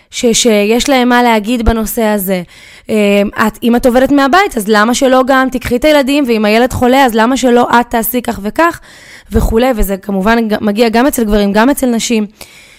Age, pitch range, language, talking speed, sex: 20-39, 215-260 Hz, Hebrew, 190 wpm, female